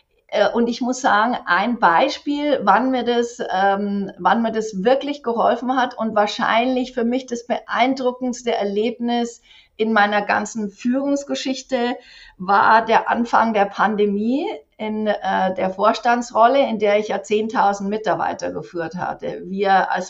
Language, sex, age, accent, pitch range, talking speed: English, female, 50-69, German, 190-235 Hz, 135 wpm